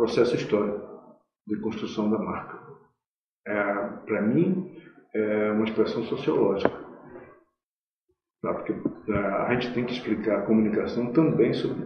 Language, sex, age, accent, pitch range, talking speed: Portuguese, male, 40-59, Brazilian, 110-150 Hz, 130 wpm